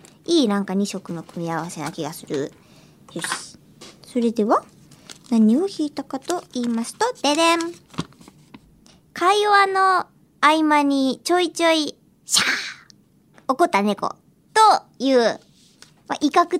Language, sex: Japanese, male